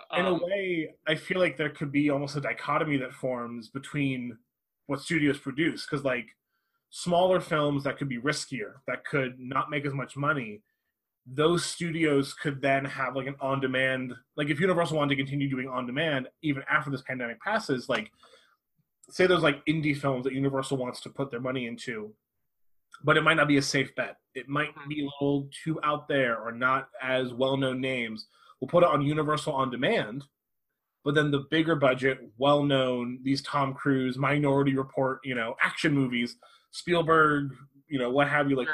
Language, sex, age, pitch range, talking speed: English, male, 20-39, 130-155 Hz, 185 wpm